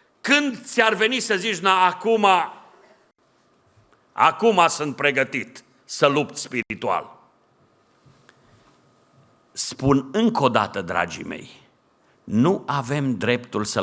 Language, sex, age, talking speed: Romanian, male, 50-69, 100 wpm